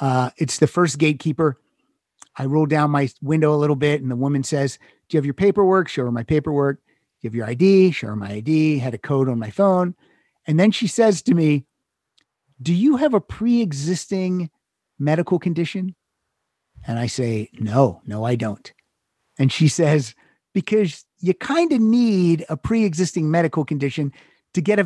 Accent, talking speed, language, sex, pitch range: American, 185 wpm, English, male, 135-195 Hz